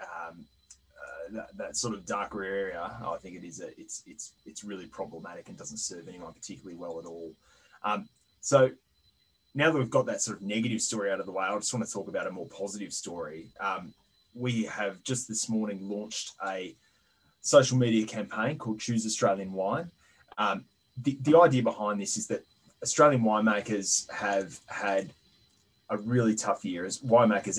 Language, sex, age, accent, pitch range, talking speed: English, male, 20-39, Australian, 95-115 Hz, 180 wpm